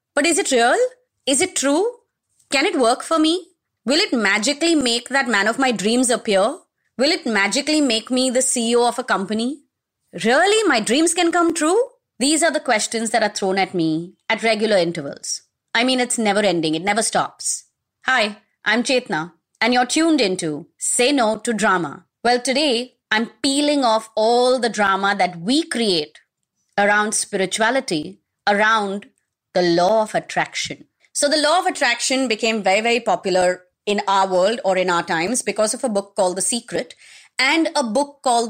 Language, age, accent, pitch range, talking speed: English, 30-49, Indian, 200-270 Hz, 180 wpm